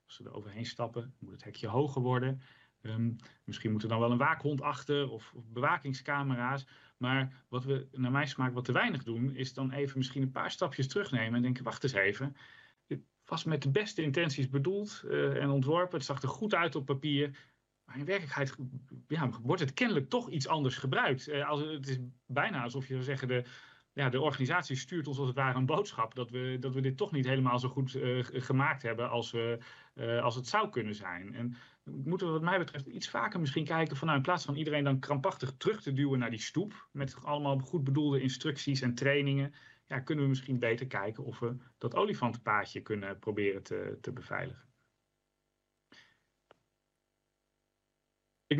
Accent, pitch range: Dutch, 120-145 Hz